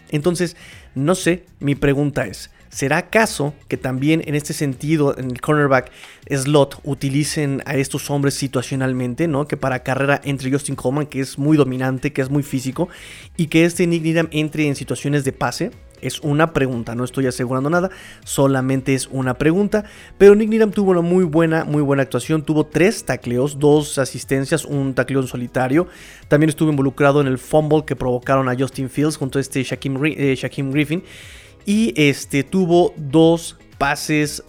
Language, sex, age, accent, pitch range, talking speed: Spanish, male, 30-49, Mexican, 135-160 Hz, 170 wpm